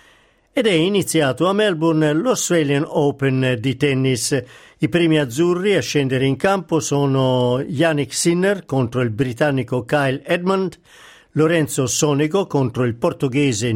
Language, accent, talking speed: Italian, native, 125 wpm